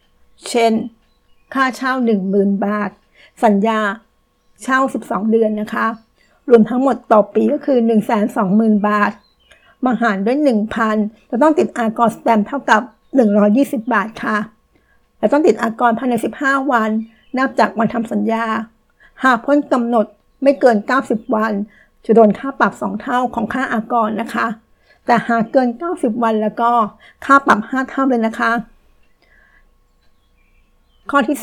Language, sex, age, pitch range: Thai, female, 60-79, 220-265 Hz